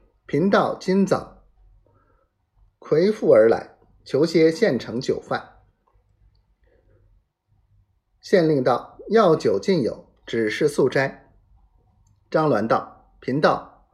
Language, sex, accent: Chinese, male, native